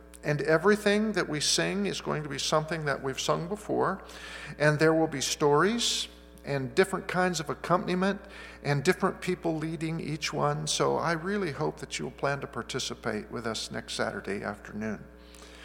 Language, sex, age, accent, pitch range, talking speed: English, male, 50-69, American, 125-170 Hz, 170 wpm